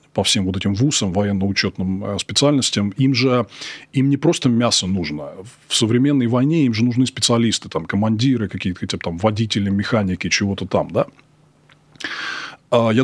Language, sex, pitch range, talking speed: Russian, male, 105-135 Hz, 150 wpm